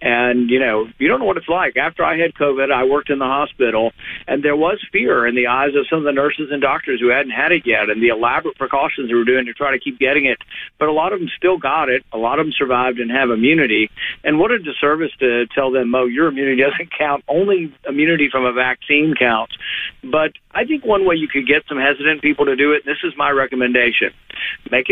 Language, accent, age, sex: English, American, 50-69, male